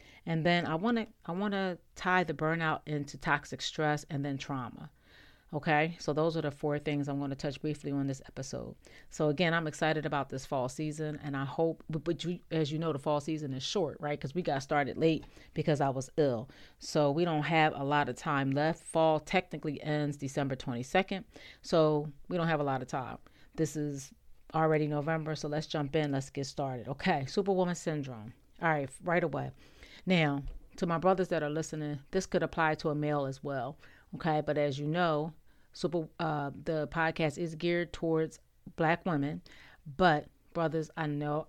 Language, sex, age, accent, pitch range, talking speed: English, female, 40-59, American, 145-165 Hz, 190 wpm